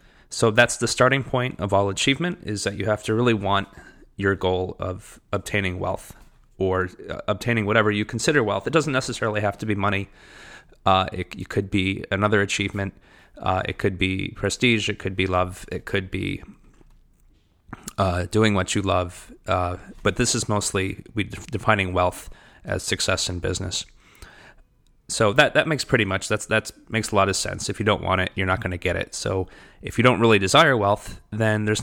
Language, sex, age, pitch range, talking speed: English, male, 30-49, 95-110 Hz, 195 wpm